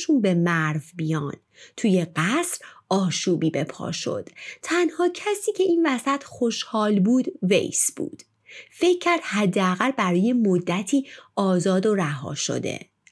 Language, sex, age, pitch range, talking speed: Persian, female, 30-49, 175-275 Hz, 125 wpm